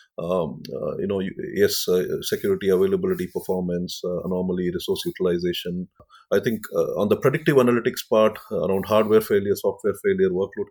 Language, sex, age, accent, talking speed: English, male, 30-49, Indian, 150 wpm